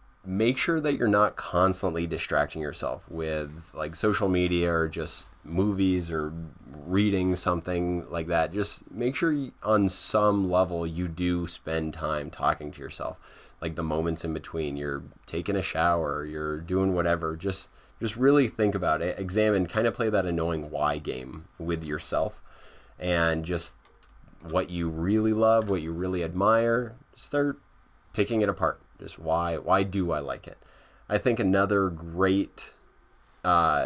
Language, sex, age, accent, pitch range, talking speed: English, male, 20-39, American, 80-95 Hz, 155 wpm